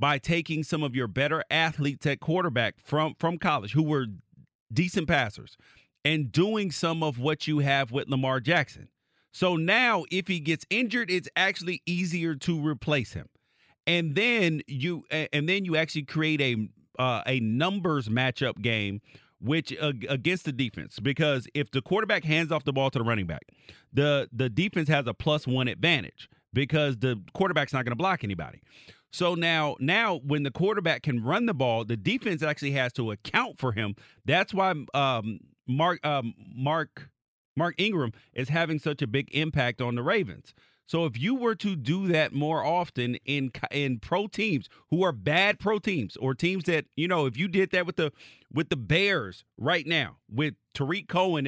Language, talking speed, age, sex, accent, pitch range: English, 185 wpm, 40-59, male, American, 130-175 Hz